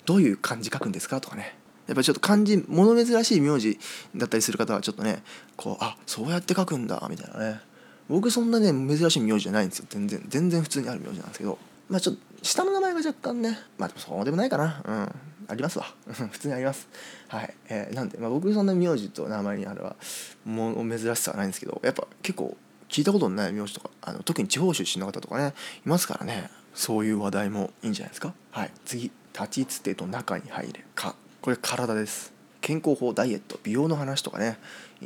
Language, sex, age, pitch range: Japanese, male, 20-39, 110-170 Hz